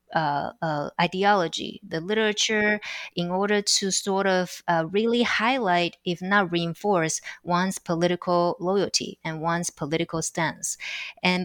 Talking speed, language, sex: 125 wpm, English, female